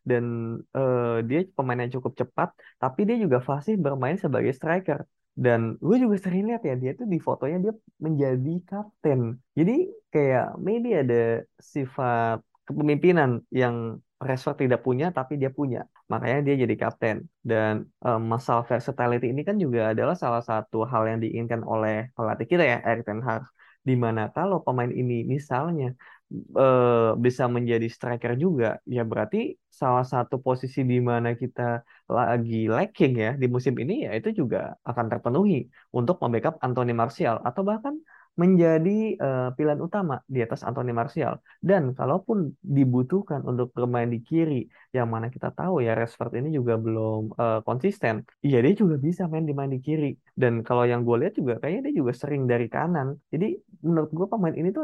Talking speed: 165 wpm